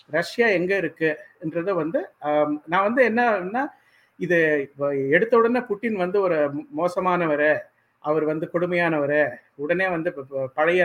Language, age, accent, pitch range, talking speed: Tamil, 50-69, native, 155-205 Hz, 115 wpm